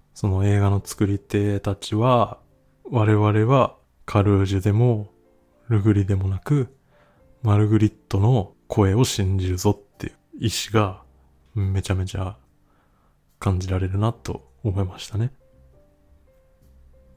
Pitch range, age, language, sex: 95-110 Hz, 20-39, Japanese, male